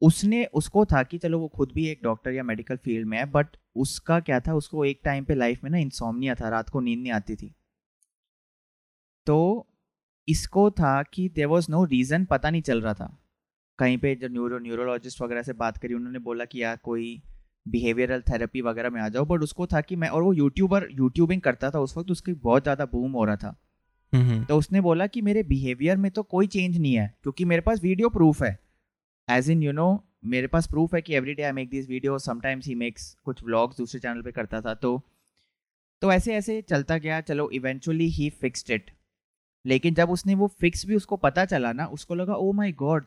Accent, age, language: native, 30-49, Hindi